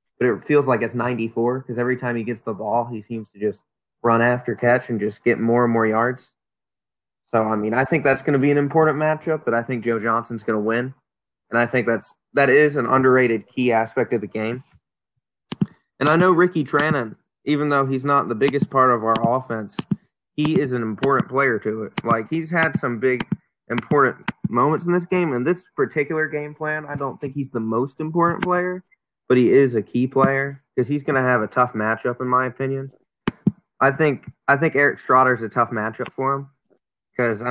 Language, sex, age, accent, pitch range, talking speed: English, male, 20-39, American, 115-145 Hz, 220 wpm